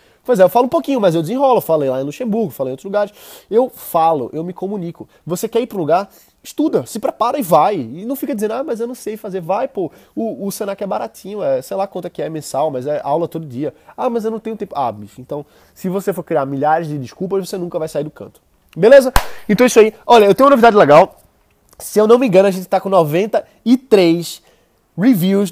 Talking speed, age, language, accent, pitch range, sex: 250 wpm, 20-39, Portuguese, Brazilian, 155-210 Hz, male